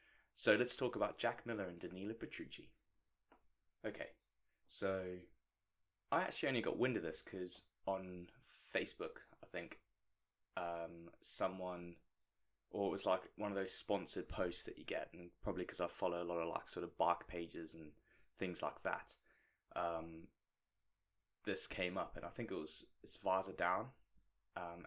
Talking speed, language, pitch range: 160 wpm, English, 85-105 Hz